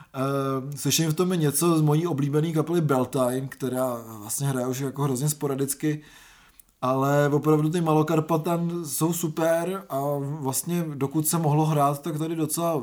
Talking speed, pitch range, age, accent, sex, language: 150 wpm, 130-150 Hz, 20-39, native, male, Czech